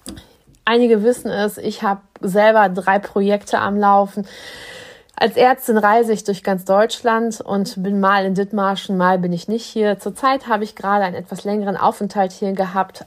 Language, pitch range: German, 185-220 Hz